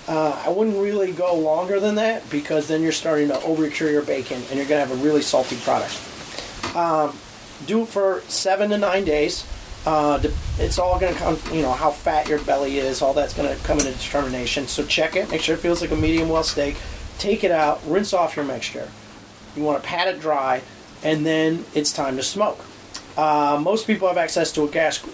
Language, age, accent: English, 30-49, American